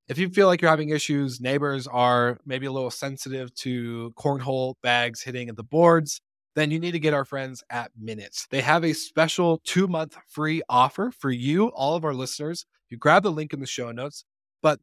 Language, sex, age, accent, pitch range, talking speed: English, male, 20-39, American, 120-155 Hz, 210 wpm